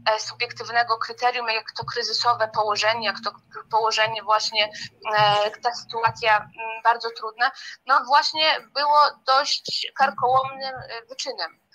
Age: 20-39